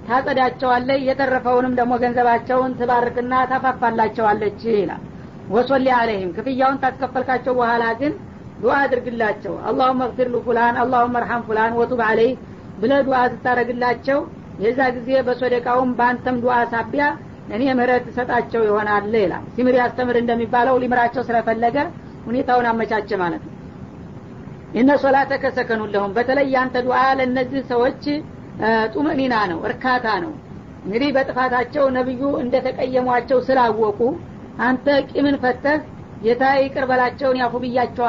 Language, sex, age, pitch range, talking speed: Amharic, female, 50-69, 235-260 Hz, 100 wpm